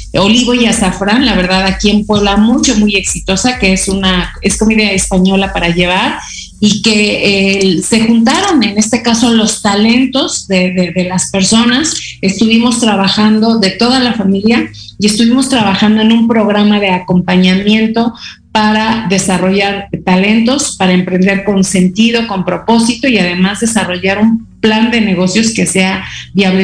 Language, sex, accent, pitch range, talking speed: Spanish, female, Mexican, 190-230 Hz, 150 wpm